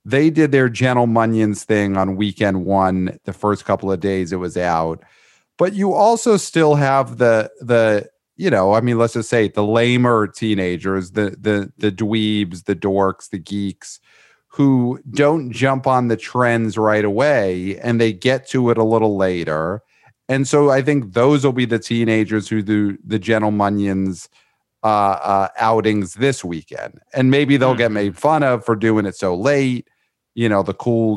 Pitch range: 95-120 Hz